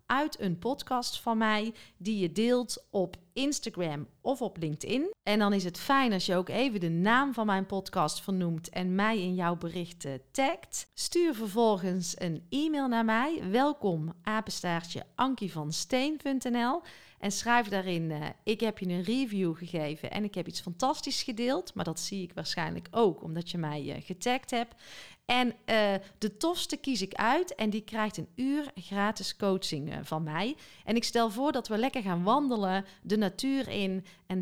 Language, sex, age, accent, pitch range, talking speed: Dutch, female, 40-59, Dutch, 180-245 Hz, 175 wpm